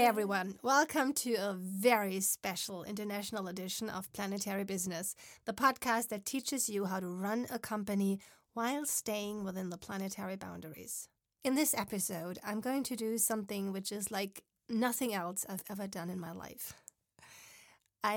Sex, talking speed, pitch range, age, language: female, 160 wpm, 190-225 Hz, 30-49, German